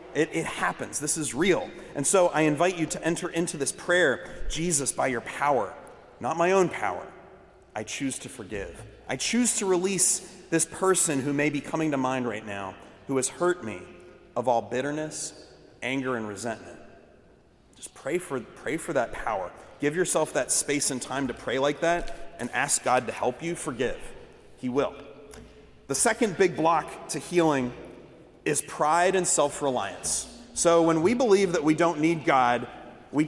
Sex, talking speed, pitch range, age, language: male, 175 wpm, 145-200 Hz, 30-49, English